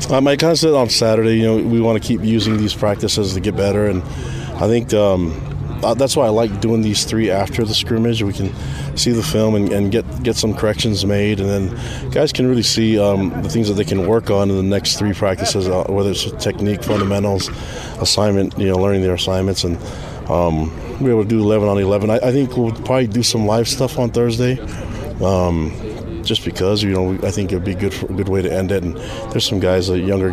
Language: English